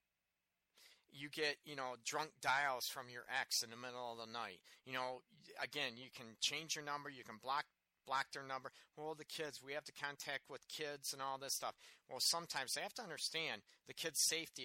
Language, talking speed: English, 210 wpm